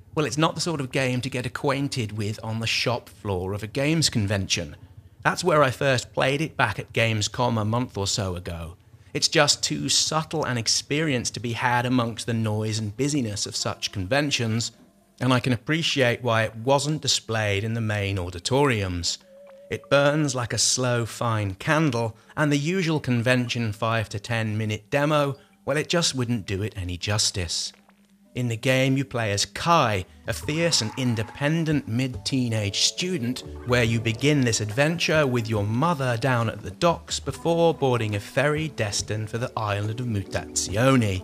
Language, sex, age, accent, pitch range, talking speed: English, male, 30-49, British, 110-145 Hz, 180 wpm